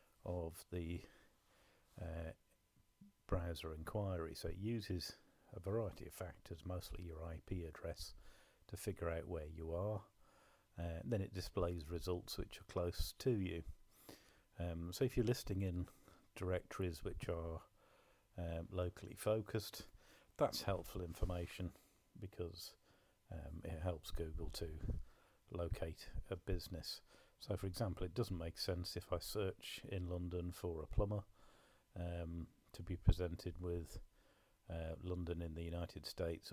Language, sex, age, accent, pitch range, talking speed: English, male, 40-59, British, 85-100 Hz, 135 wpm